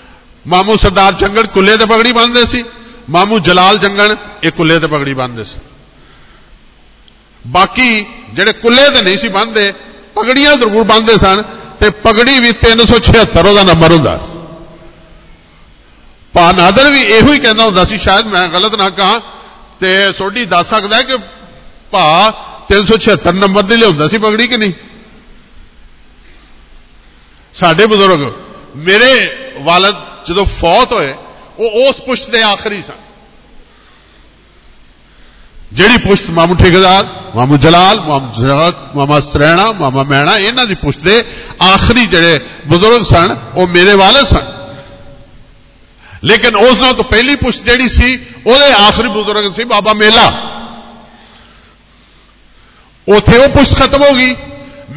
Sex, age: male, 50-69